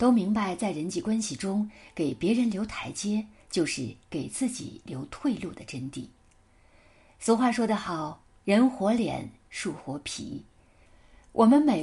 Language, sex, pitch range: Chinese, female, 155-235 Hz